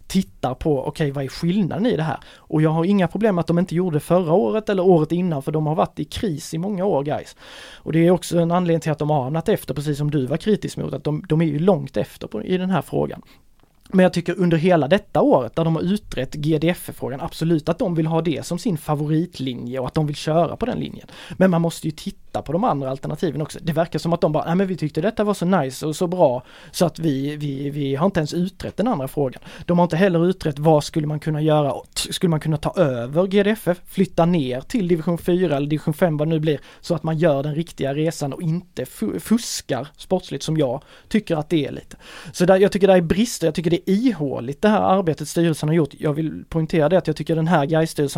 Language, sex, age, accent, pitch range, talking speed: Swedish, male, 20-39, native, 150-180 Hz, 260 wpm